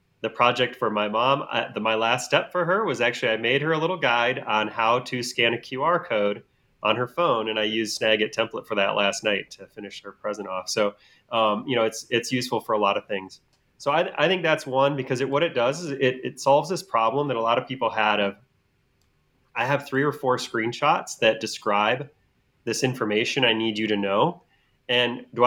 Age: 30-49